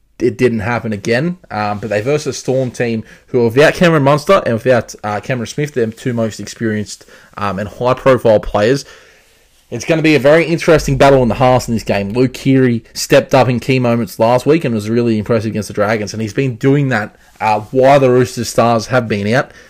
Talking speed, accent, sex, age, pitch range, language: 215 wpm, Australian, male, 20-39, 110-130 Hz, English